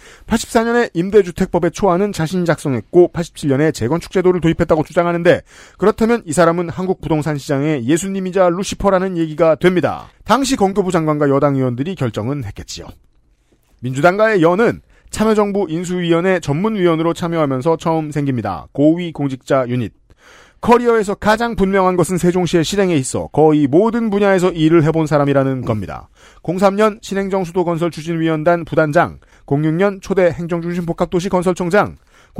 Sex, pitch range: male, 155-195 Hz